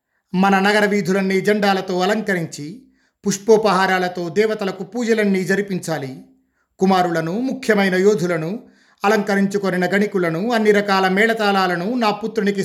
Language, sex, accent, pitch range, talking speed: Telugu, male, native, 175-205 Hz, 90 wpm